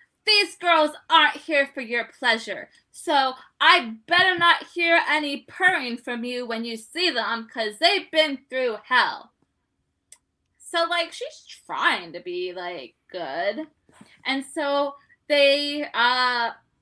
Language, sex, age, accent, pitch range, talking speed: English, female, 20-39, American, 215-305 Hz, 130 wpm